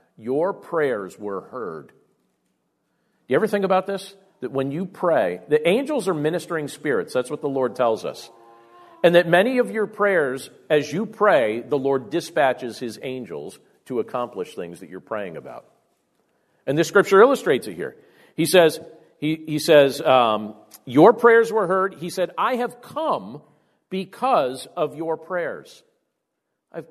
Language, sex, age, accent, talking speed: English, male, 50-69, American, 160 wpm